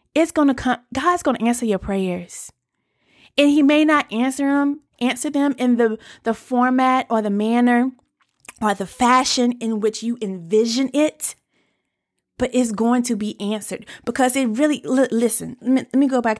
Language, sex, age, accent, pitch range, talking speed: English, female, 20-39, American, 195-250 Hz, 185 wpm